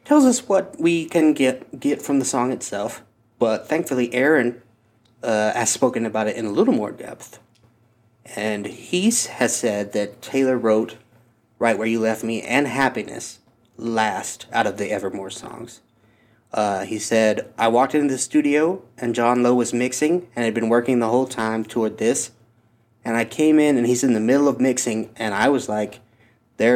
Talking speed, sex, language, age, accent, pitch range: 185 wpm, male, English, 30-49, American, 115-130 Hz